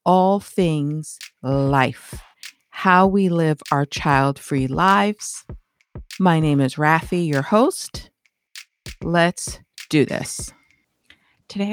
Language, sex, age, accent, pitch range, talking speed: English, female, 50-69, American, 140-180 Hz, 95 wpm